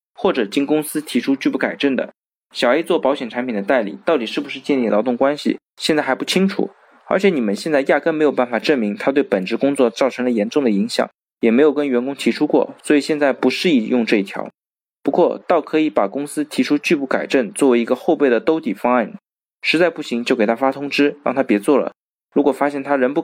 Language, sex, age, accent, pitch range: Chinese, male, 20-39, native, 125-160 Hz